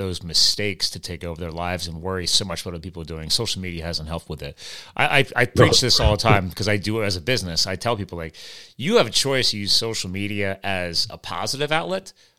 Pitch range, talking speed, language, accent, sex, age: 95-125 Hz, 260 wpm, English, American, male, 30-49